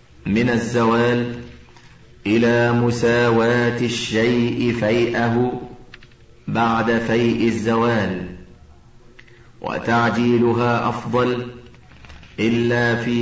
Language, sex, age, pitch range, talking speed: Arabic, male, 40-59, 115-120 Hz, 60 wpm